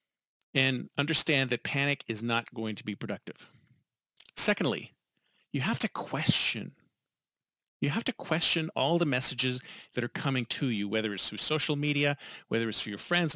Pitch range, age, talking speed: 125-170 Hz, 40-59, 165 wpm